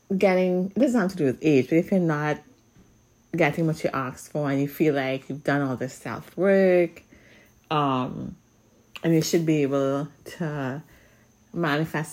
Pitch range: 135-185 Hz